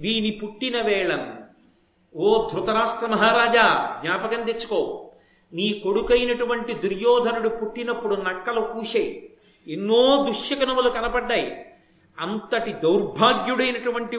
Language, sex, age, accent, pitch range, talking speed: Telugu, male, 50-69, native, 205-255 Hz, 80 wpm